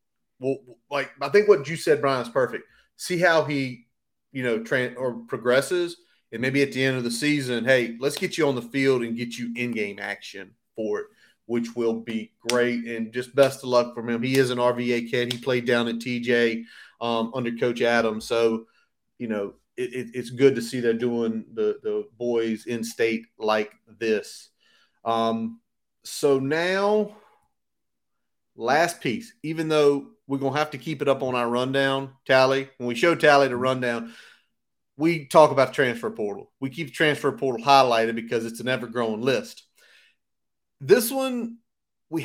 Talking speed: 180 wpm